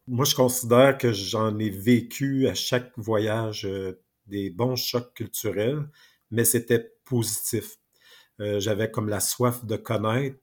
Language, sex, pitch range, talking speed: French, male, 105-125 Hz, 145 wpm